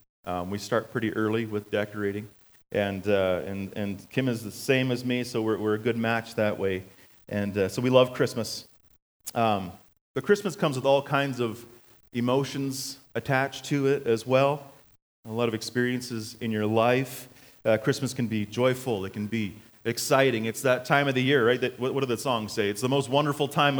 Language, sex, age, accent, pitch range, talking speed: English, male, 30-49, American, 105-130 Hz, 200 wpm